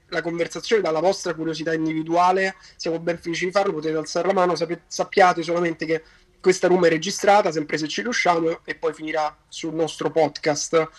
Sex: male